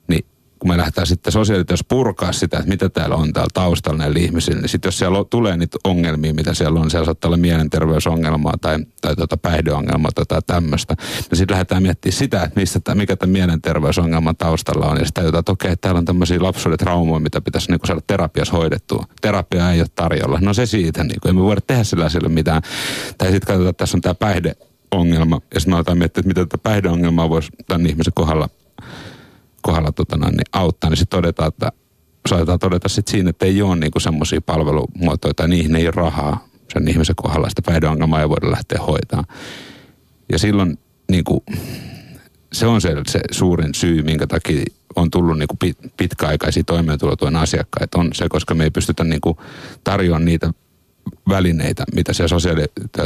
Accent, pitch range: native, 80-95 Hz